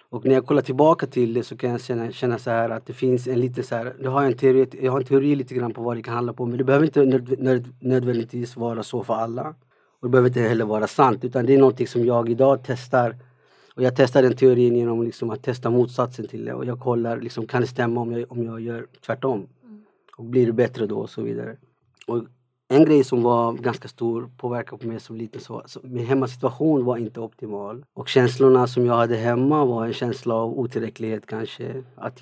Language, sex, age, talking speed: Swedish, male, 30-49, 235 wpm